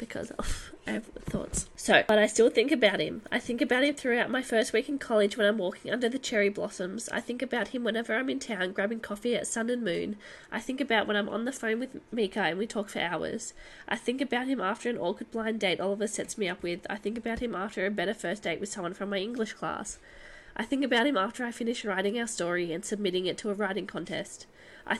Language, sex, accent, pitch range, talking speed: English, female, Australian, 195-235 Hz, 250 wpm